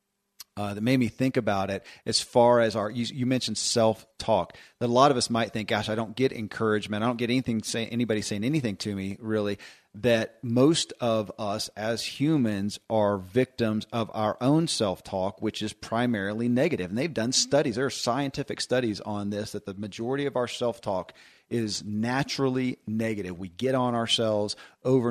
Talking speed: 195 wpm